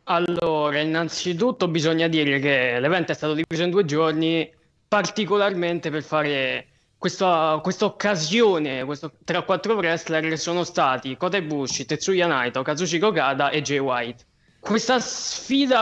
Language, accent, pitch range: Italian, native, 155-205 Hz